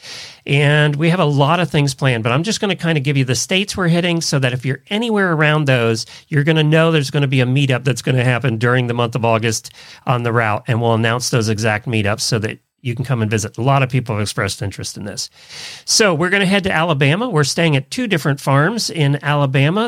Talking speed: 265 wpm